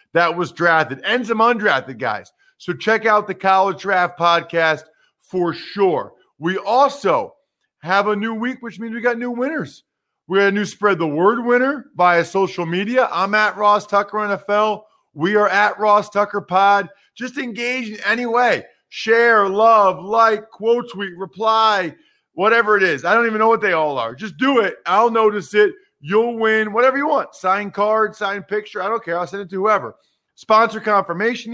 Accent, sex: American, male